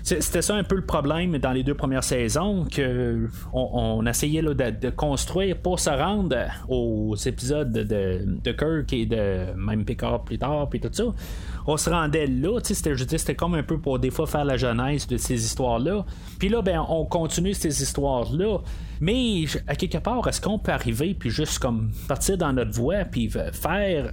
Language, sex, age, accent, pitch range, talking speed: French, male, 30-49, Canadian, 115-160 Hz, 195 wpm